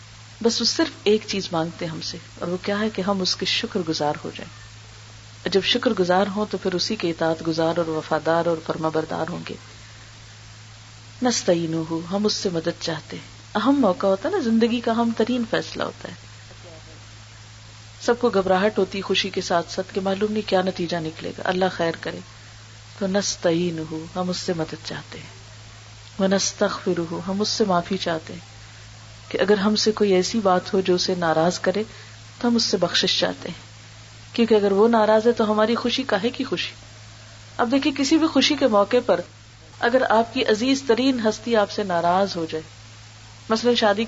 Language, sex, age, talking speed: Urdu, female, 40-59, 190 wpm